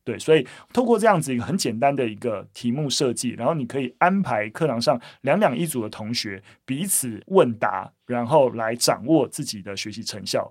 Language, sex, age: Chinese, male, 30-49